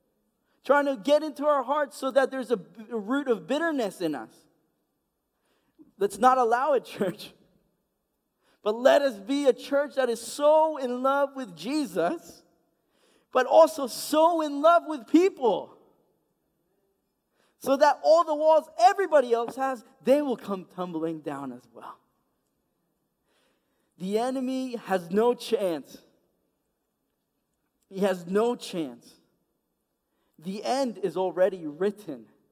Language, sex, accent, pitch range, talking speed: English, male, American, 210-280 Hz, 125 wpm